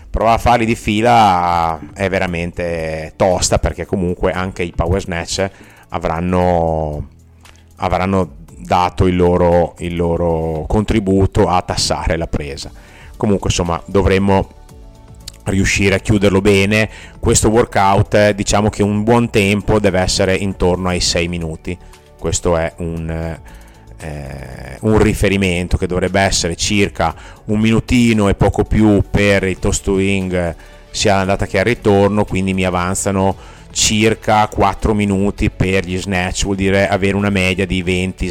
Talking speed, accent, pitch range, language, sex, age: 135 wpm, native, 85-105 Hz, Italian, male, 30-49